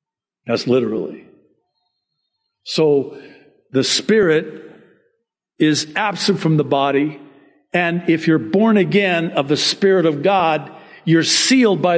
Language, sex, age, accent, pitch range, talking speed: English, male, 50-69, American, 155-210 Hz, 115 wpm